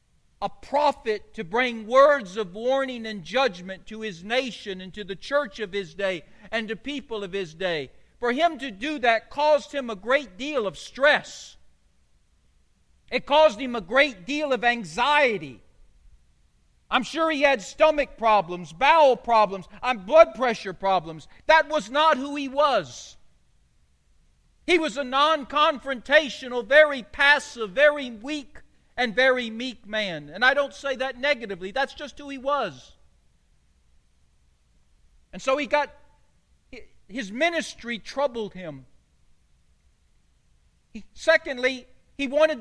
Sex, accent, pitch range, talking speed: male, American, 180-290 Hz, 135 wpm